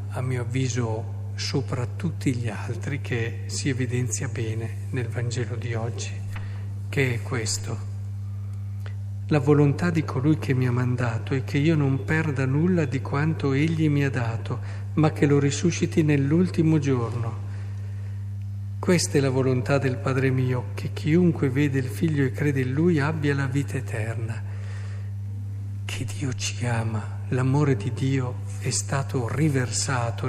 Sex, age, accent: male, 50-69, native